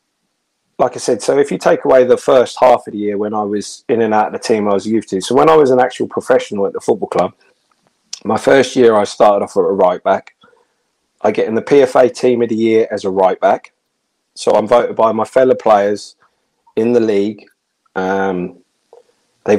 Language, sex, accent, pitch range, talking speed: English, male, British, 110-140 Hz, 225 wpm